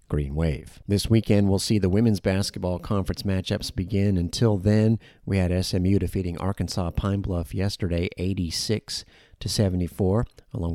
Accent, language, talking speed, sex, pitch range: American, English, 140 wpm, male, 80-100 Hz